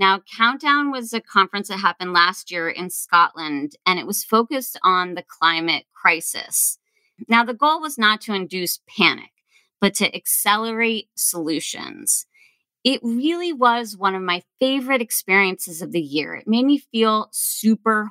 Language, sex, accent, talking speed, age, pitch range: English, female, American, 155 wpm, 30-49, 180-235 Hz